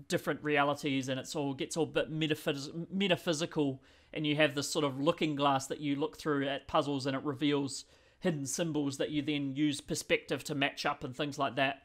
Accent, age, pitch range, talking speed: Australian, 30-49, 140-165 Hz, 215 wpm